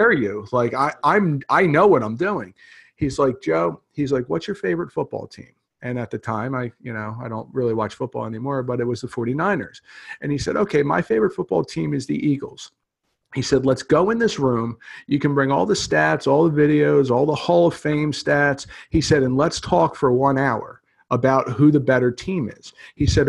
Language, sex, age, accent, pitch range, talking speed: English, male, 50-69, American, 115-145 Hz, 220 wpm